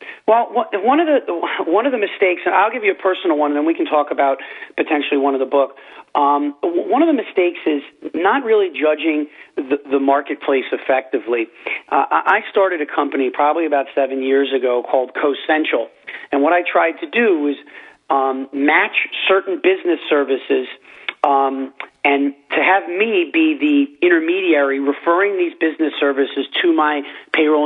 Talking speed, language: 170 wpm, English